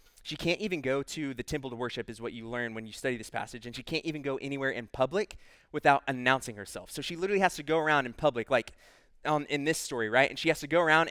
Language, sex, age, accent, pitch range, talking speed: English, male, 20-39, American, 120-155 Hz, 270 wpm